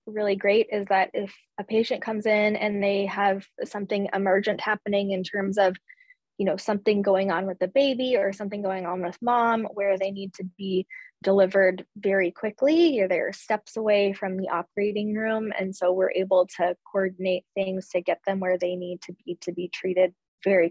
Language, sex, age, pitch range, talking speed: English, female, 20-39, 190-215 Hz, 195 wpm